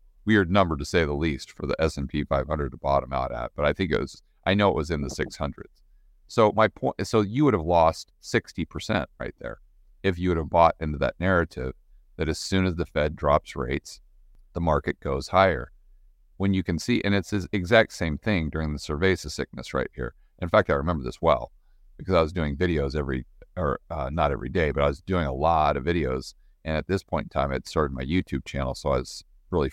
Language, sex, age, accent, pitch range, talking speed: English, male, 40-59, American, 70-90 Hz, 230 wpm